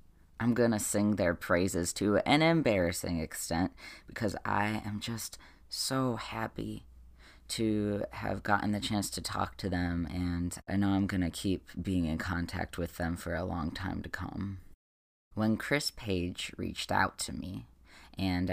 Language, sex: English, female